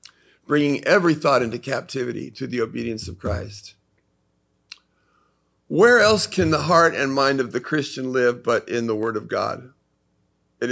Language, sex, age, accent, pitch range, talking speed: English, male, 50-69, American, 120-150 Hz, 155 wpm